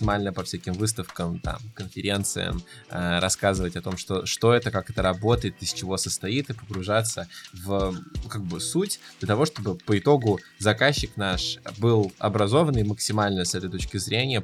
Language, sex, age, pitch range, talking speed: Russian, male, 20-39, 95-110 Hz, 160 wpm